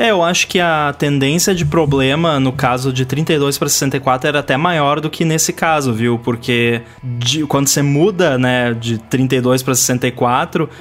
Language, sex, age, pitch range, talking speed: Portuguese, male, 20-39, 125-150 Hz, 170 wpm